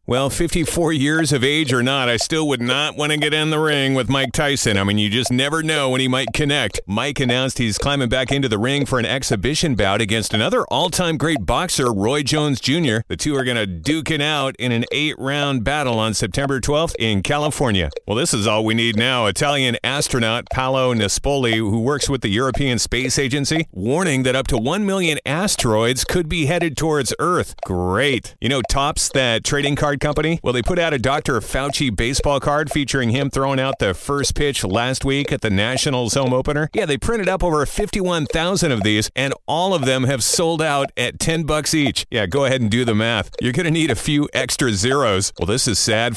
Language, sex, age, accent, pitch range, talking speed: English, male, 40-59, American, 120-150 Hz, 215 wpm